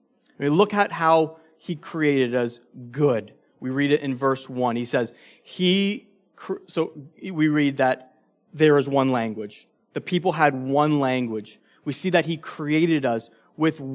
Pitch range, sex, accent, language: 140-175 Hz, male, American, English